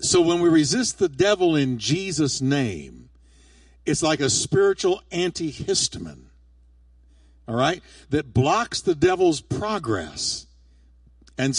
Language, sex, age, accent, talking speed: English, male, 50-69, American, 115 wpm